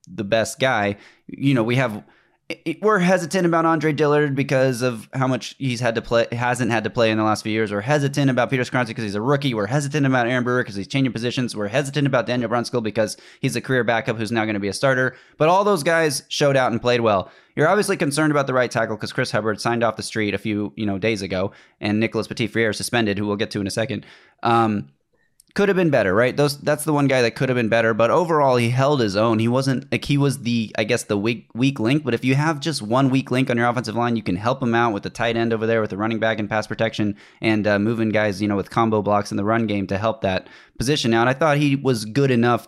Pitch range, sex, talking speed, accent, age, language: 110-130 Hz, male, 265 wpm, American, 20-39, English